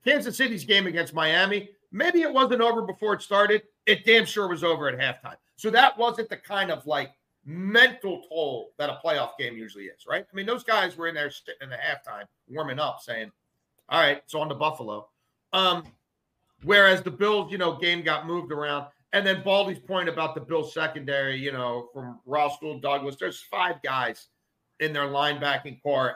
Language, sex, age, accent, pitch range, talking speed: English, male, 40-59, American, 150-220 Hz, 195 wpm